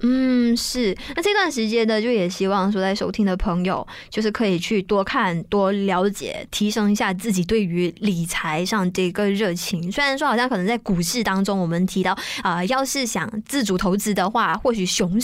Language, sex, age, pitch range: Chinese, female, 20-39, 190-230 Hz